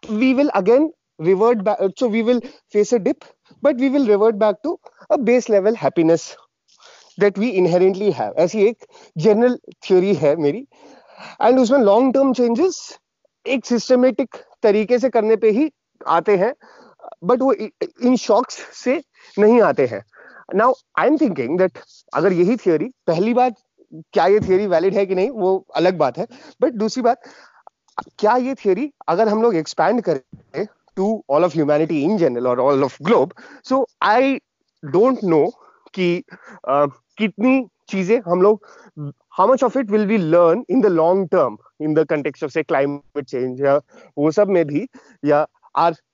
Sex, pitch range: male, 165-245 Hz